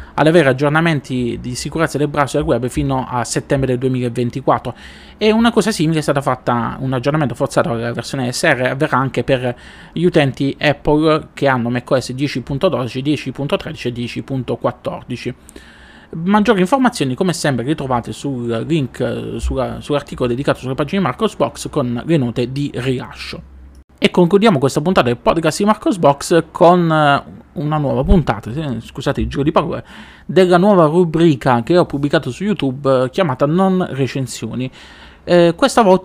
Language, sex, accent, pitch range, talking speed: Italian, male, native, 125-175 Hz, 150 wpm